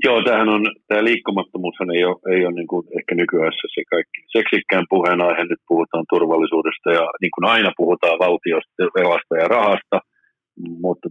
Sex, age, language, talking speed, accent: male, 50-69, Finnish, 150 wpm, native